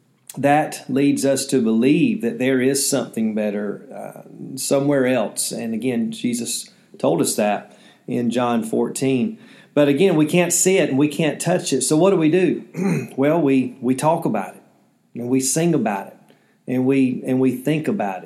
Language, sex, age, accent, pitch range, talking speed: English, male, 40-59, American, 125-155 Hz, 180 wpm